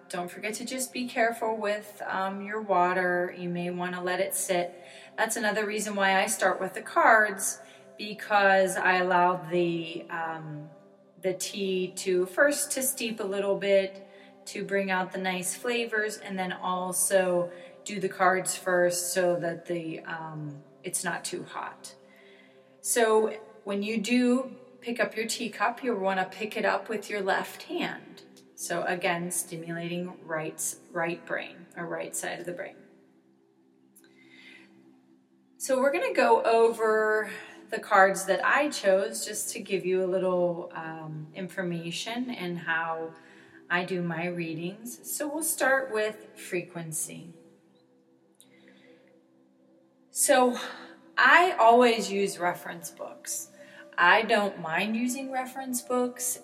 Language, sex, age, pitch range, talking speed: English, female, 30-49, 170-215 Hz, 140 wpm